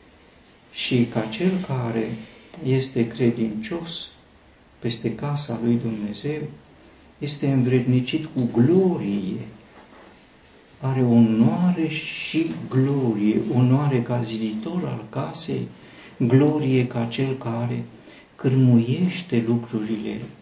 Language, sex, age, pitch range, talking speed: Romanian, male, 50-69, 115-130 Hz, 85 wpm